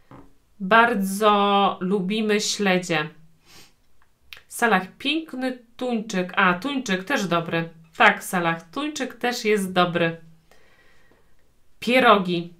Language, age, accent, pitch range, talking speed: Polish, 40-59, native, 175-235 Hz, 85 wpm